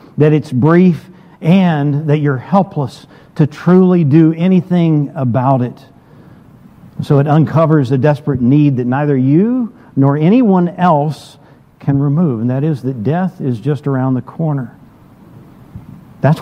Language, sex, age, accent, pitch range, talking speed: English, male, 50-69, American, 130-165 Hz, 140 wpm